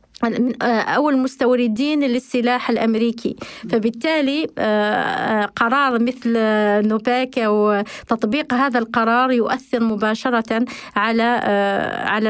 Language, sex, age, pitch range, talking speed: Arabic, female, 20-39, 220-255 Hz, 80 wpm